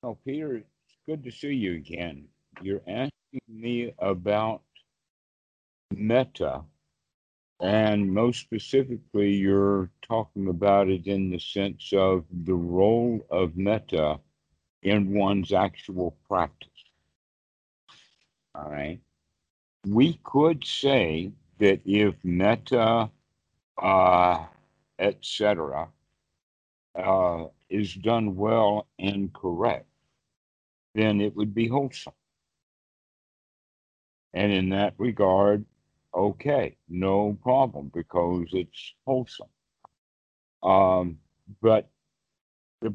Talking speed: 90 wpm